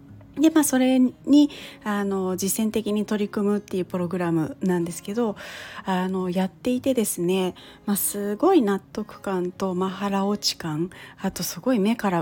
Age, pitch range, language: 40-59, 185-255 Hz, Japanese